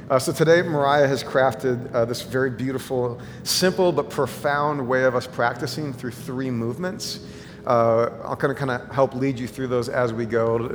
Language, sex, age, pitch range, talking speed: English, male, 40-59, 115-140 Hz, 185 wpm